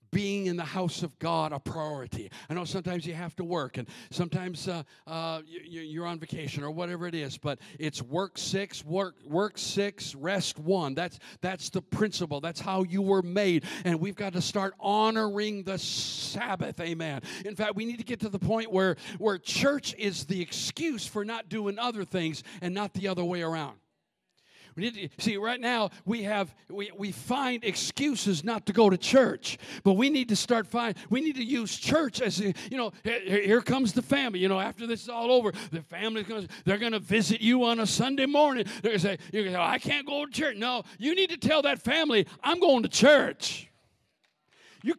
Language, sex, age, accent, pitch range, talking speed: English, male, 50-69, American, 175-230 Hz, 210 wpm